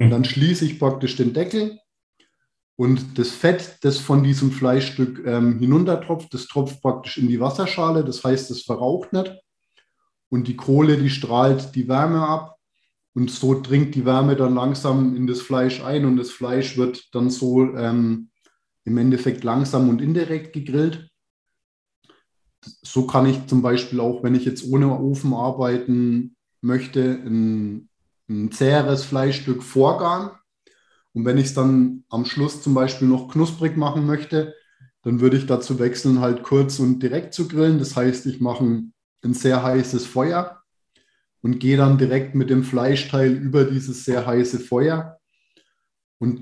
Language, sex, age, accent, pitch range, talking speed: German, male, 20-39, German, 125-140 Hz, 160 wpm